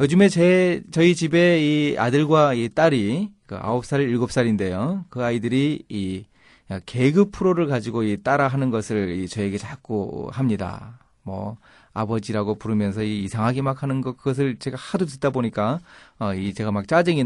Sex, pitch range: male, 100-140 Hz